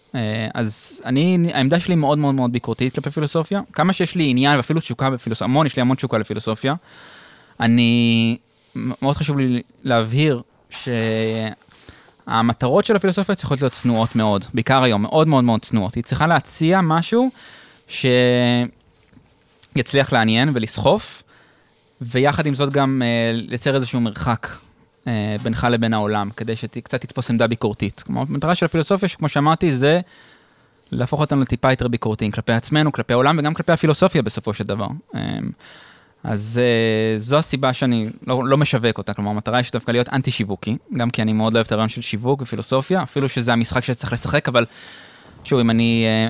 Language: Hebrew